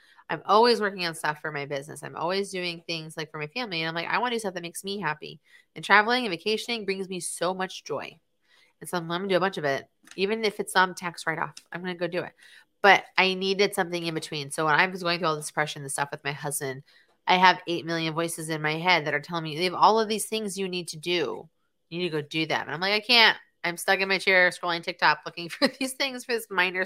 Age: 30-49